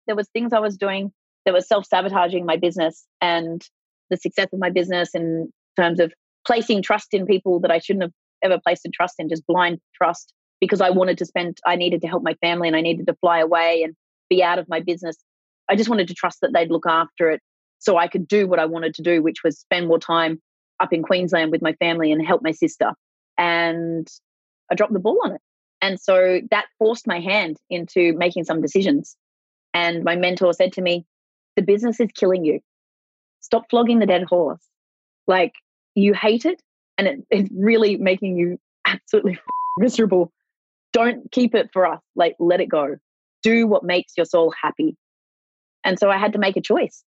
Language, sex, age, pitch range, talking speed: English, female, 30-49, 170-210 Hz, 205 wpm